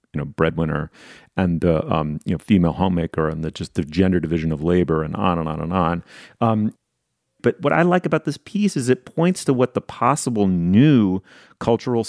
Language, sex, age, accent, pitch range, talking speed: English, male, 30-49, American, 90-125 Hz, 210 wpm